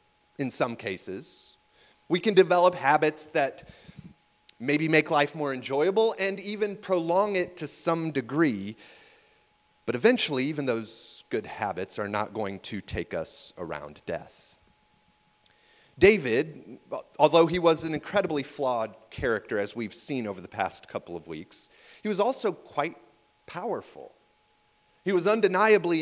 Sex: male